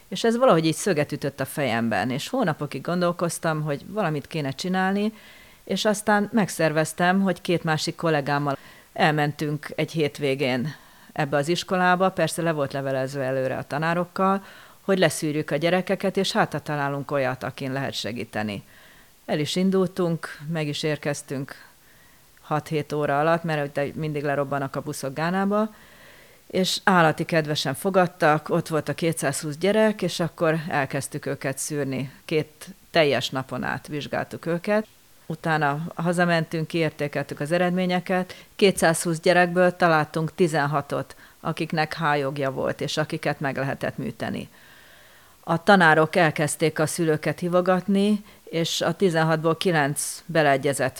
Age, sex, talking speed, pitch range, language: 40-59, female, 130 wpm, 145-180 Hz, Hungarian